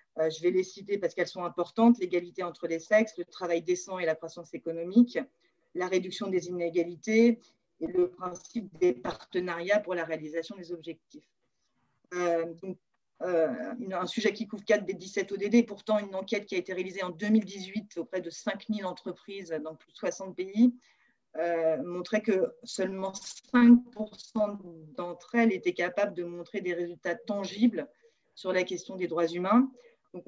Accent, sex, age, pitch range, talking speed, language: French, female, 30-49, 175-210 Hz, 165 wpm, French